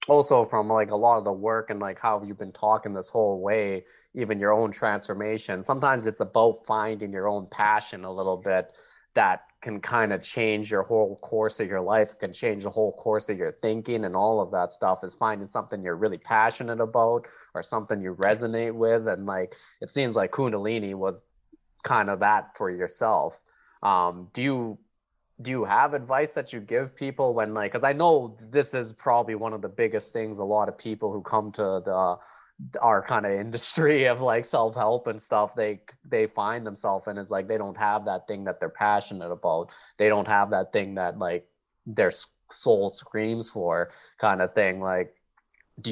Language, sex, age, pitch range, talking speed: English, male, 20-39, 100-115 Hz, 200 wpm